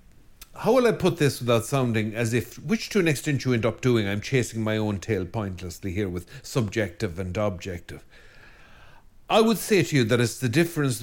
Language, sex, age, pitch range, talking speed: English, male, 50-69, 105-140 Hz, 200 wpm